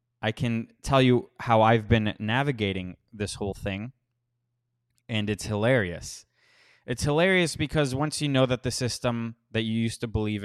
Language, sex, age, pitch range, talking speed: English, male, 20-39, 110-130 Hz, 160 wpm